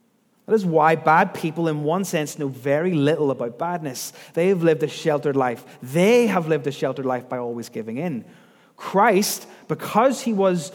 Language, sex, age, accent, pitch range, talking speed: English, male, 30-49, British, 150-220 Hz, 185 wpm